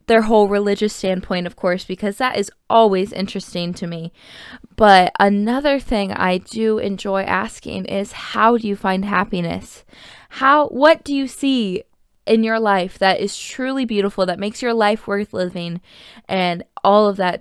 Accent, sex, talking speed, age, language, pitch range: American, female, 165 wpm, 20-39, English, 195-230 Hz